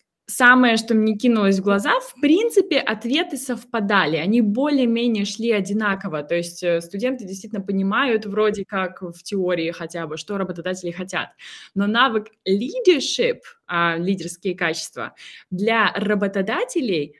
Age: 20-39